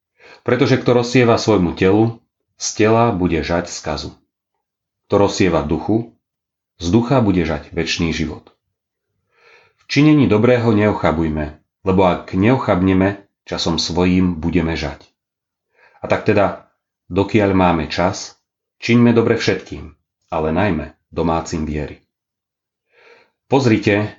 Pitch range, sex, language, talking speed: 90-115 Hz, male, Slovak, 110 wpm